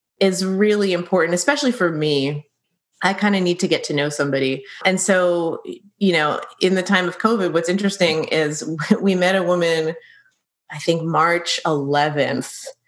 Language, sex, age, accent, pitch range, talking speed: English, female, 30-49, American, 160-205 Hz, 165 wpm